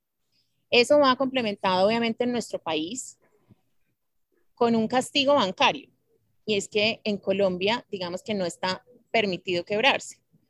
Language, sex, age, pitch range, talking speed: Spanish, female, 30-49, 195-250 Hz, 125 wpm